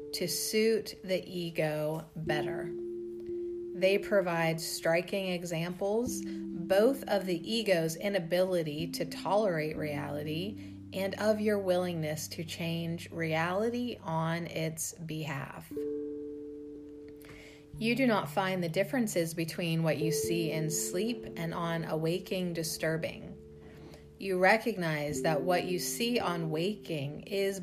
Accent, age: American, 30-49